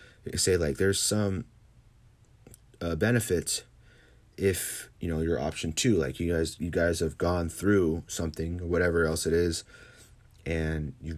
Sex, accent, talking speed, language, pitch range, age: male, American, 150 wpm, English, 80-100 Hz, 30-49